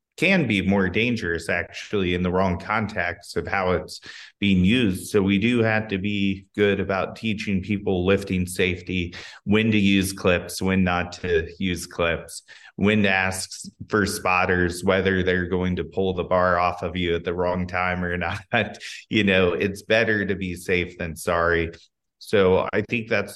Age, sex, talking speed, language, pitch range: 30-49, male, 175 wpm, English, 90-105 Hz